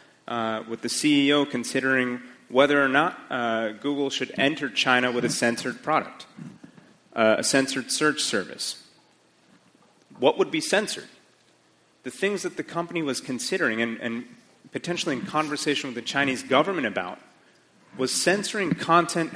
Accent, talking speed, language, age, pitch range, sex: American, 145 wpm, English, 30-49, 125-165 Hz, male